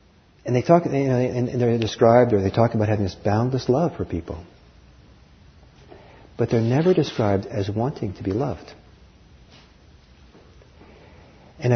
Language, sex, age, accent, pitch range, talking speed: English, male, 50-69, American, 90-115 Hz, 145 wpm